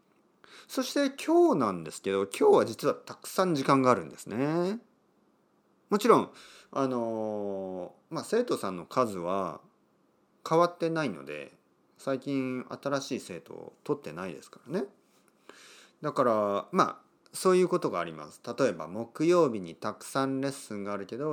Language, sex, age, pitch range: Japanese, male, 40-59, 110-190 Hz